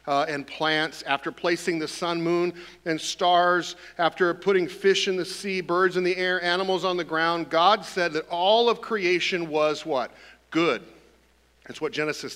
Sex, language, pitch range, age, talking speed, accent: male, English, 150-185 Hz, 50-69, 175 wpm, American